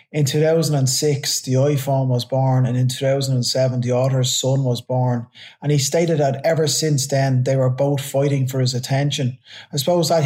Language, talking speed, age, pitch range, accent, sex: English, 180 wpm, 20-39, 130-145 Hz, Irish, male